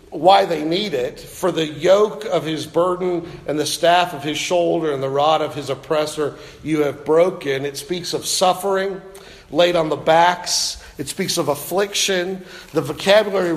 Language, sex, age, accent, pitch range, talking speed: English, male, 50-69, American, 155-195 Hz, 175 wpm